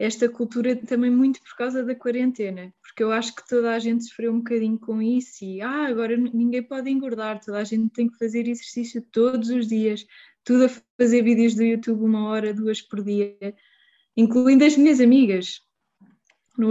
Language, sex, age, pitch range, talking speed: Portuguese, female, 20-39, 220-250 Hz, 185 wpm